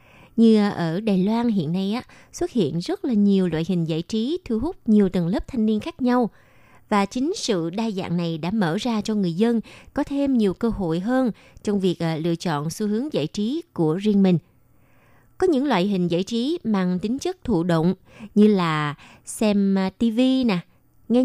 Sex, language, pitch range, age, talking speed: female, Vietnamese, 175-235 Hz, 20-39, 195 wpm